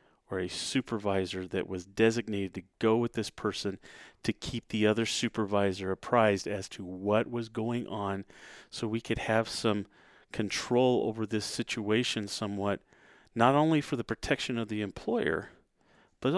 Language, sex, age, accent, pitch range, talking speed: English, male, 40-59, American, 100-130 Hz, 155 wpm